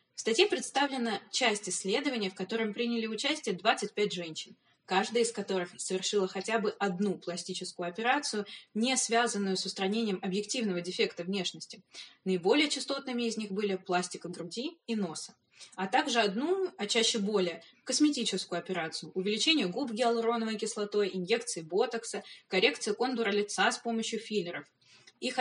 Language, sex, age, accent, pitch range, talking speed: Russian, female, 20-39, native, 190-230 Hz, 135 wpm